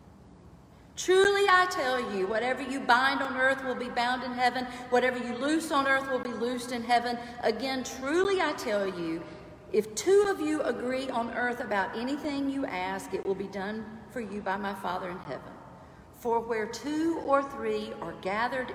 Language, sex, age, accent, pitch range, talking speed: English, female, 50-69, American, 190-255 Hz, 185 wpm